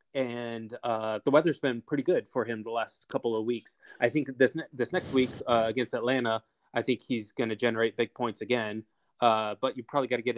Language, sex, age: English, male, 20-39